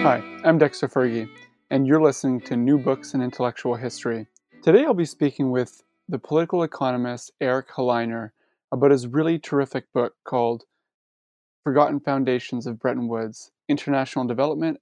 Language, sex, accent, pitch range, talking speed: English, male, American, 125-150 Hz, 145 wpm